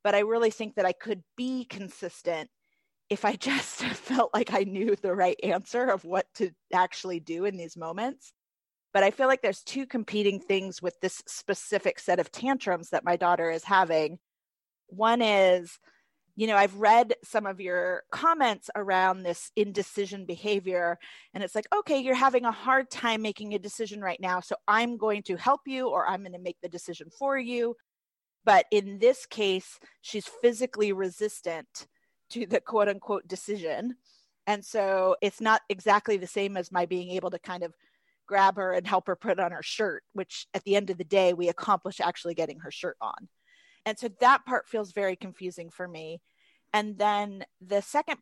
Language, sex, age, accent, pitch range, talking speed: English, female, 30-49, American, 185-230 Hz, 185 wpm